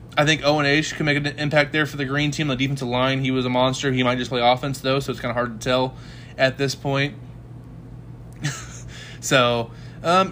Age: 20-39